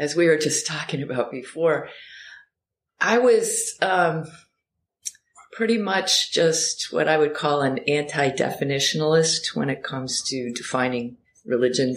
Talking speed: 125 wpm